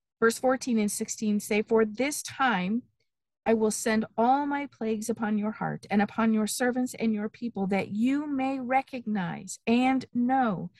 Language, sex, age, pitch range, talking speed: English, female, 40-59, 195-245 Hz, 165 wpm